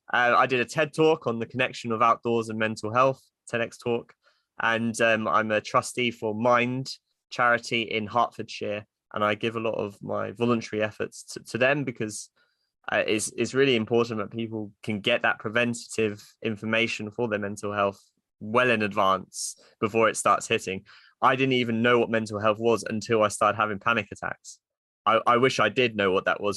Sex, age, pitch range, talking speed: male, 20-39, 105-120 Hz, 190 wpm